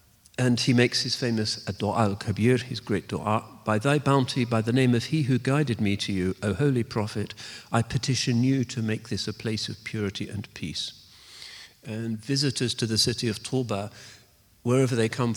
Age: 50-69